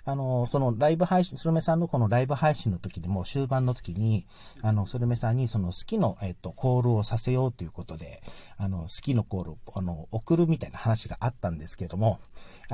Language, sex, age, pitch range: Japanese, male, 40-59, 95-140 Hz